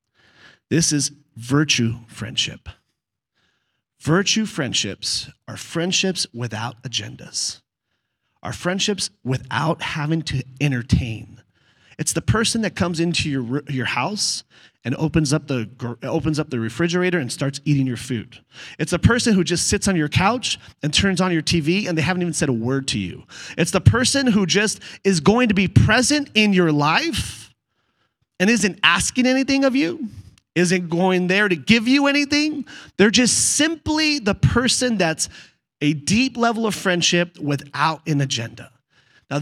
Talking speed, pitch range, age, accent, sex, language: 155 wpm, 135-205 Hz, 30-49, American, male, English